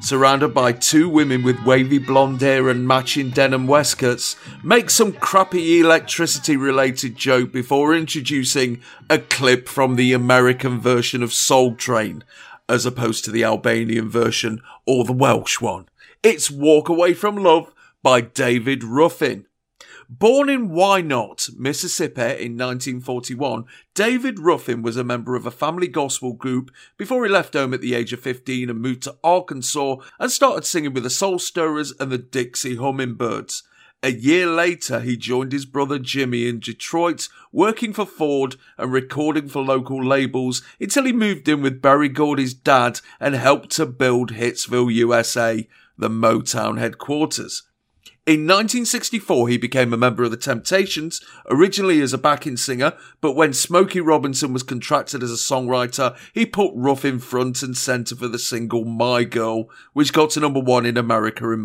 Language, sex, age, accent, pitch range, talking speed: English, male, 50-69, British, 125-155 Hz, 160 wpm